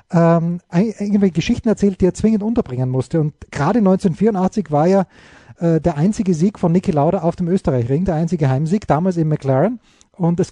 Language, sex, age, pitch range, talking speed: German, male, 30-49, 165-200 Hz, 185 wpm